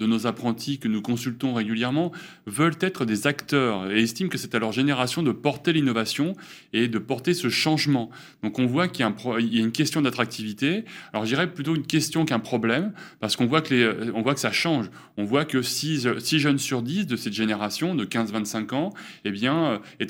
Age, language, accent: 20-39, French, French